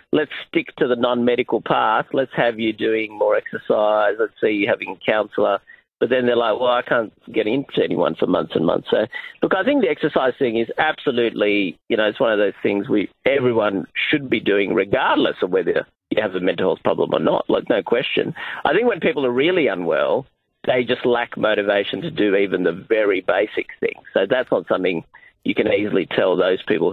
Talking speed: 215 wpm